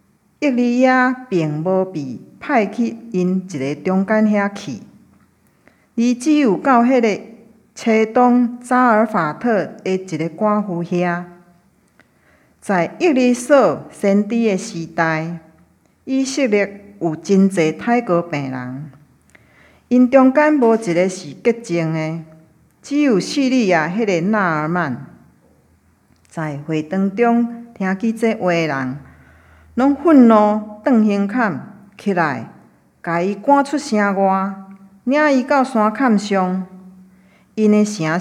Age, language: 50-69, Chinese